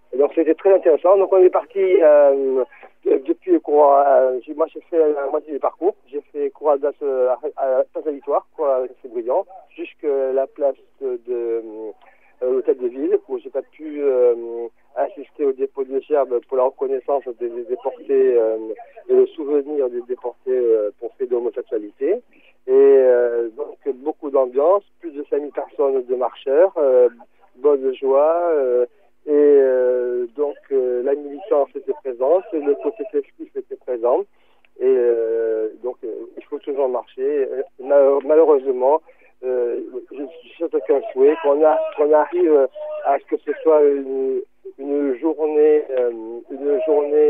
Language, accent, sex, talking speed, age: French, French, male, 150 wpm, 50-69